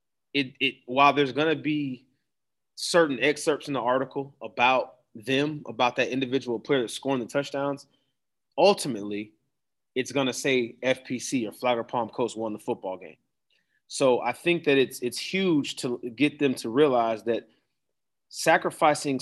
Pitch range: 130-160 Hz